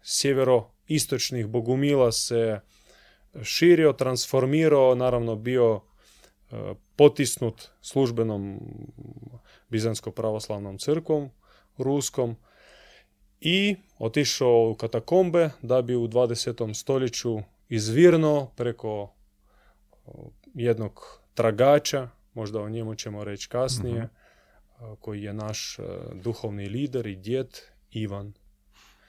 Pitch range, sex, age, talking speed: 105-130 Hz, male, 20-39, 80 wpm